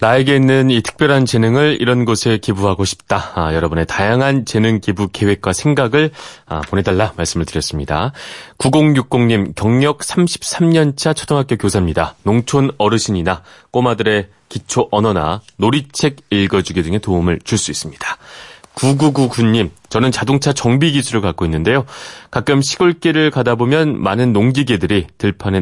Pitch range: 90-130 Hz